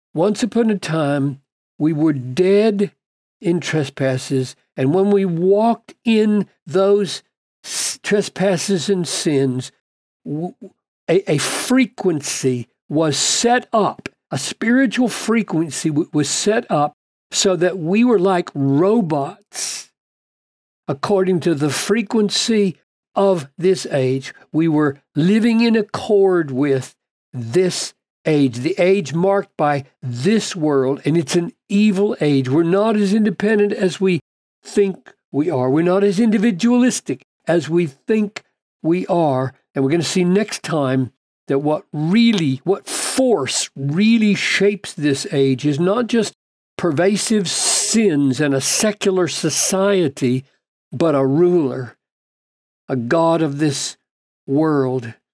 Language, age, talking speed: English, 60-79, 125 wpm